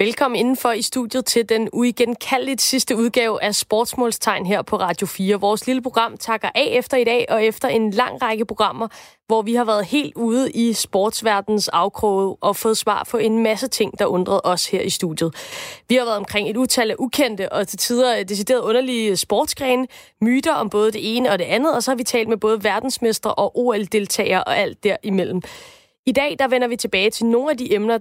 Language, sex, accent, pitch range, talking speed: Danish, female, native, 205-255 Hz, 210 wpm